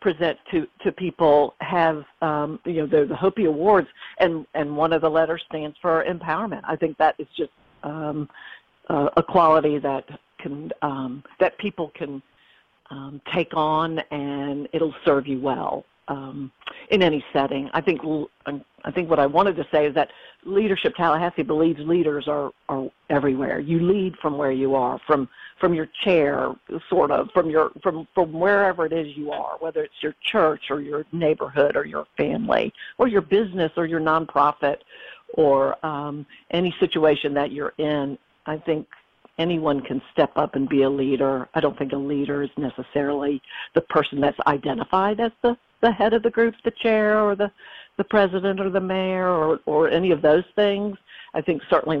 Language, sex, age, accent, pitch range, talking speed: English, female, 50-69, American, 145-185 Hz, 180 wpm